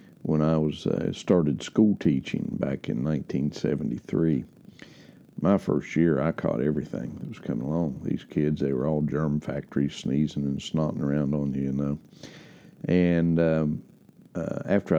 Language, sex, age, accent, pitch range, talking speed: English, male, 60-79, American, 75-95 Hz, 155 wpm